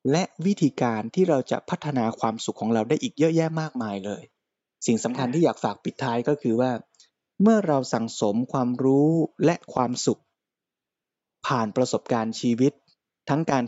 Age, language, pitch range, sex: 20-39, Thai, 120-150 Hz, male